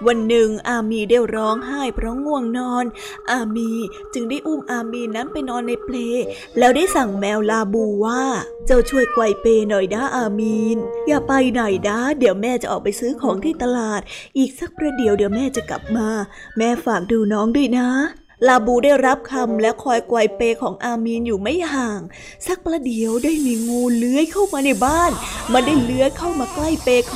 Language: Thai